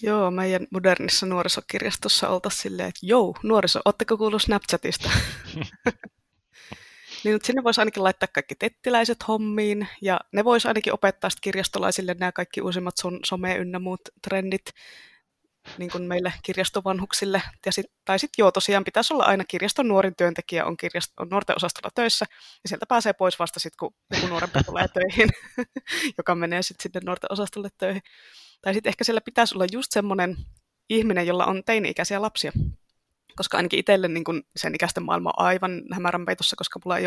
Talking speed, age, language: 160 wpm, 20-39, Finnish